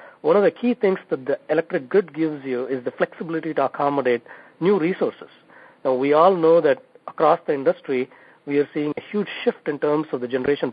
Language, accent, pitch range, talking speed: English, Indian, 135-175 Hz, 205 wpm